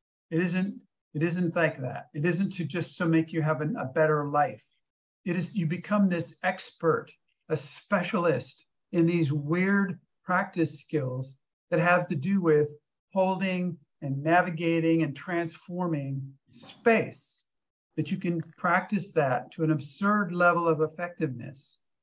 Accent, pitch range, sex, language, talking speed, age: American, 150-175 Hz, male, English, 140 wpm, 50-69